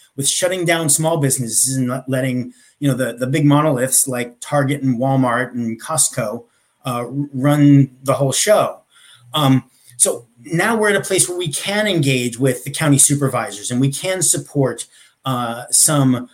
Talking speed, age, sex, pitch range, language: 170 wpm, 30-49, male, 135-180 Hz, English